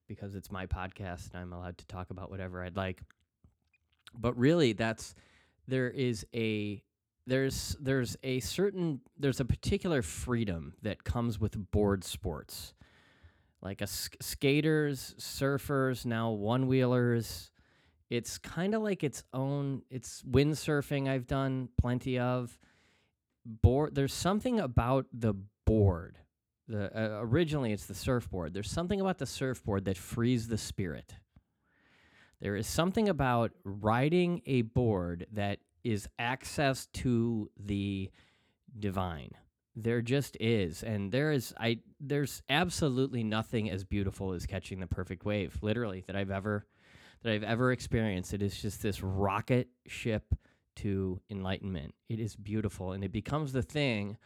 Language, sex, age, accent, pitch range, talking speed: English, male, 20-39, American, 95-130 Hz, 140 wpm